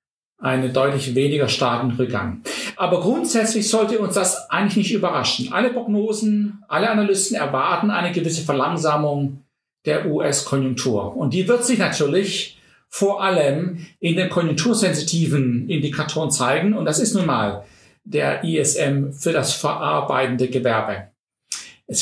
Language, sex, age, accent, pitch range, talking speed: German, male, 50-69, German, 145-205 Hz, 130 wpm